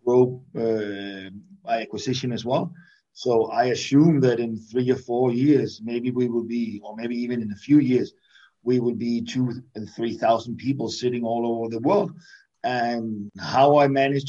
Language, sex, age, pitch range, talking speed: English, male, 50-69, 115-135 Hz, 180 wpm